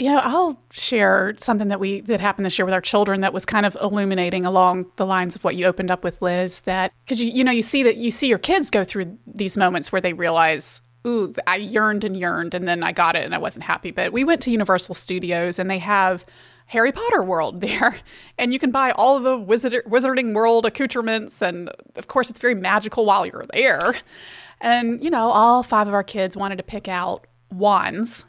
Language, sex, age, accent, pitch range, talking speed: English, female, 30-49, American, 185-245 Hz, 230 wpm